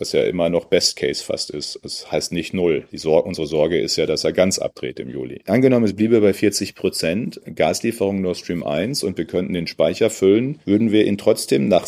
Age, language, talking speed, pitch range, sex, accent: 40-59, German, 225 wpm, 95-105 Hz, male, German